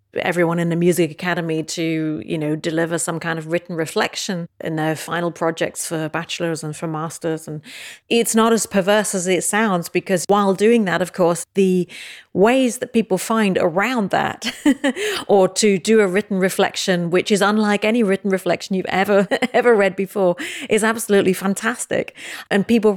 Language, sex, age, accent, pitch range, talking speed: Danish, female, 40-59, British, 170-210 Hz, 170 wpm